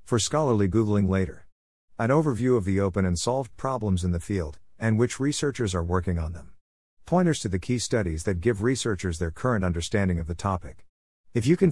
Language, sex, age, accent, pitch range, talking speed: English, male, 50-69, American, 90-120 Hz, 200 wpm